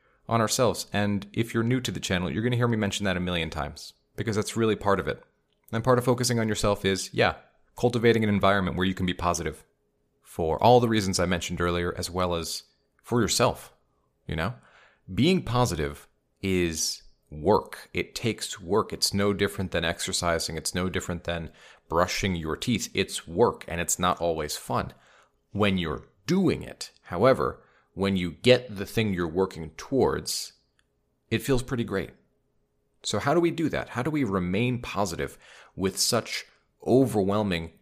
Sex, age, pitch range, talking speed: male, 30-49, 85-120 Hz, 180 wpm